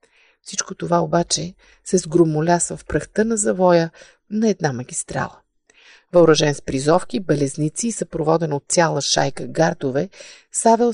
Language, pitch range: Bulgarian, 165-220 Hz